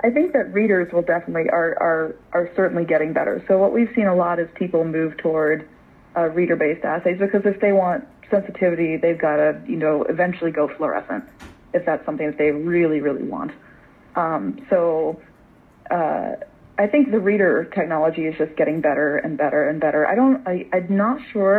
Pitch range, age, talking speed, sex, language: 155-185 Hz, 30-49, 190 wpm, female, English